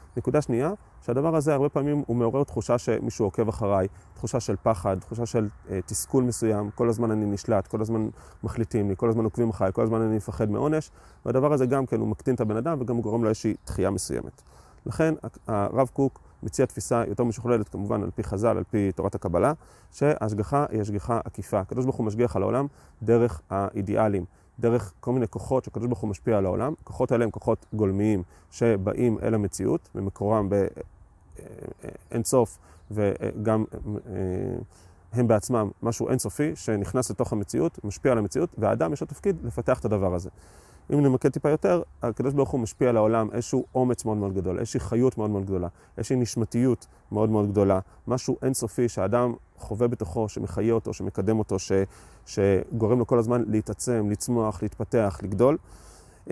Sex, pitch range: male, 100-120 Hz